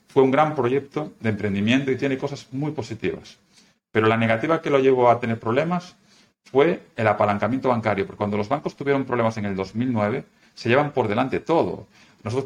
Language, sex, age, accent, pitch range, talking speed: Spanish, male, 40-59, Spanish, 110-145 Hz, 190 wpm